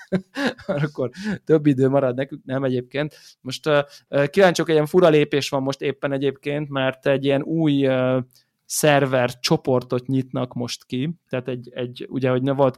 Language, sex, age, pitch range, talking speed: Hungarian, male, 20-39, 130-155 Hz, 165 wpm